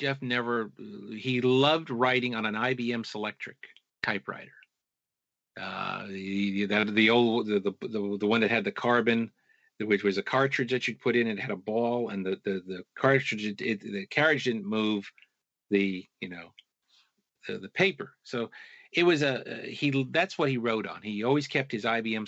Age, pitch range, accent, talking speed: 50-69, 100-130 Hz, American, 185 wpm